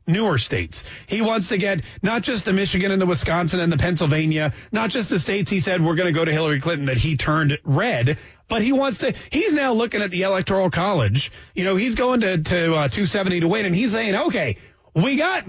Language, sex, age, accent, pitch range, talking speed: English, male, 30-49, American, 150-200 Hz, 230 wpm